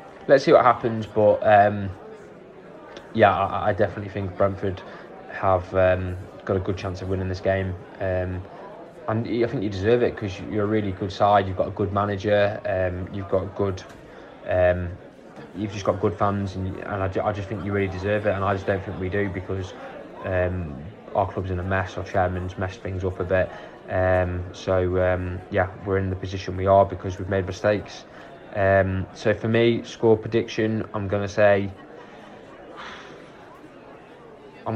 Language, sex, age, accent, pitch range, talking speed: English, male, 20-39, British, 95-105 Hz, 175 wpm